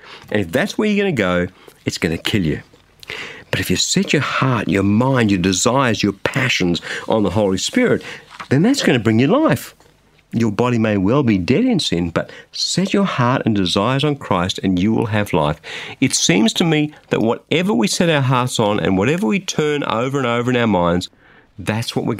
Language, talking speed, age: English, 220 wpm, 50-69